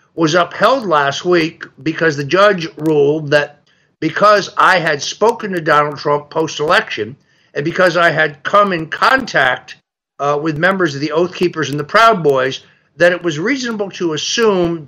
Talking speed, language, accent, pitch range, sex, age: 165 wpm, English, American, 145-185 Hz, male, 60-79